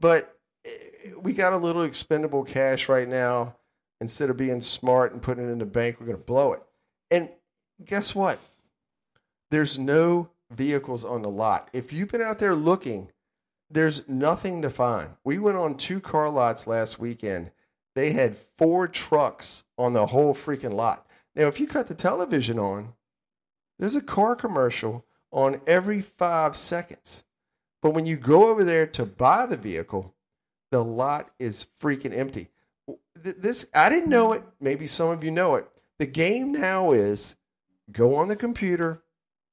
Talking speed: 165 wpm